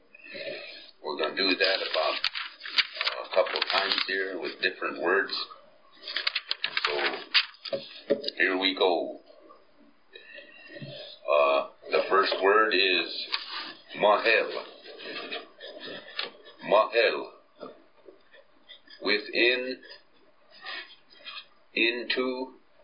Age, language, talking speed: 50-69, English, 70 wpm